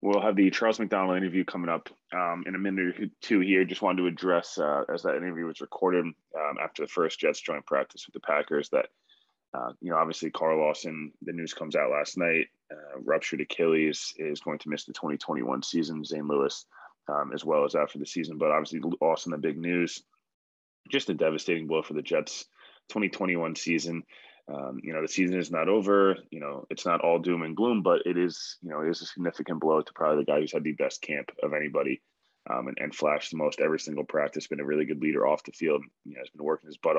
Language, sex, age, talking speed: English, male, 20-39, 230 wpm